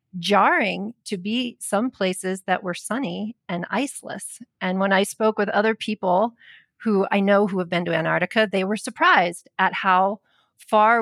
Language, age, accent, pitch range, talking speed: English, 40-59, American, 185-225 Hz, 170 wpm